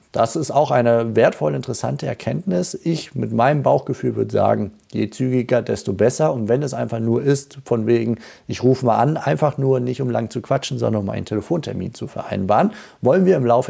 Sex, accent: male, German